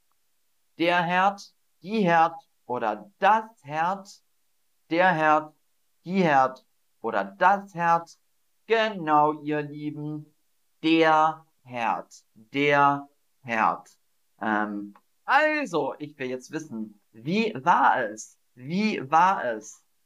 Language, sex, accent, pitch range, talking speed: German, male, German, 120-200 Hz, 100 wpm